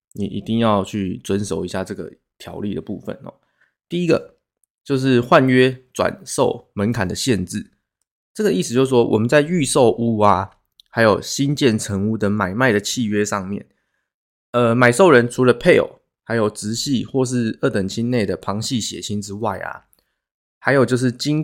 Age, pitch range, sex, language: 20-39, 100-130 Hz, male, Chinese